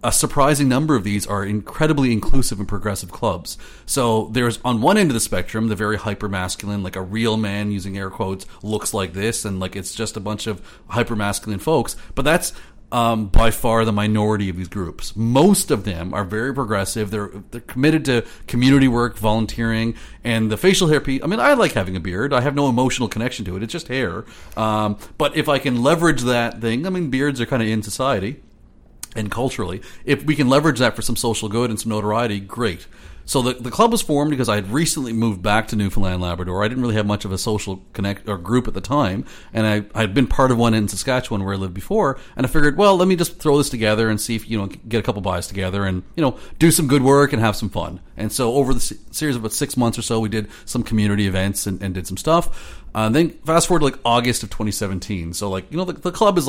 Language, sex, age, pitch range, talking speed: English, male, 40-59, 100-130 Hz, 245 wpm